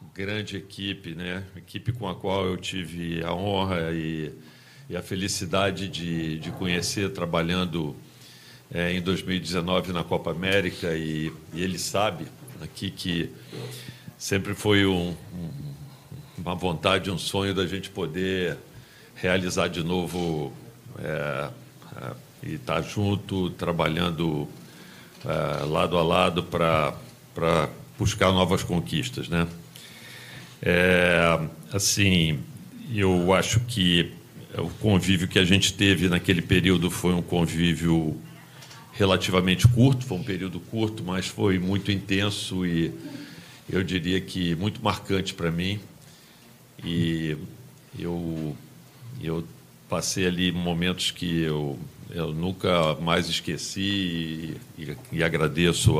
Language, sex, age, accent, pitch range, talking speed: Portuguese, male, 50-69, Brazilian, 85-95 Hz, 110 wpm